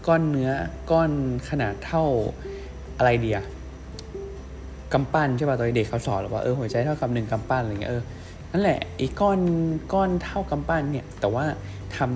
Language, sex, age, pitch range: Thai, male, 20-39, 110-150 Hz